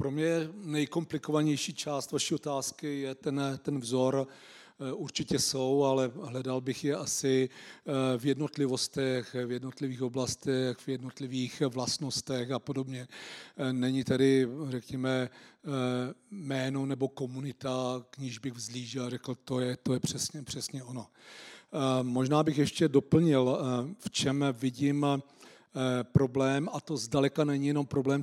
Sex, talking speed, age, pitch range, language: male, 130 wpm, 40-59, 130-150 Hz, Czech